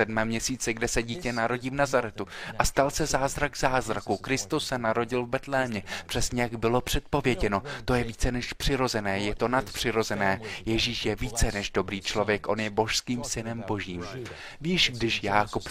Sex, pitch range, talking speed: male, 105-130 Hz, 165 wpm